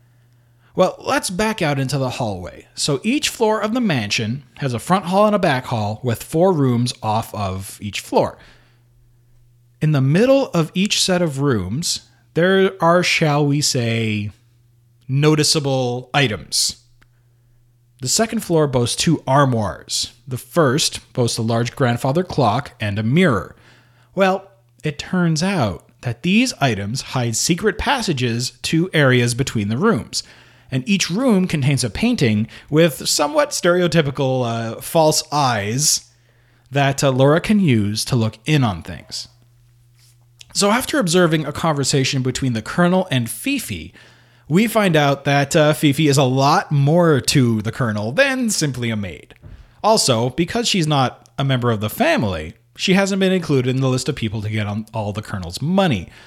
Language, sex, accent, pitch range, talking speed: English, male, American, 120-165 Hz, 160 wpm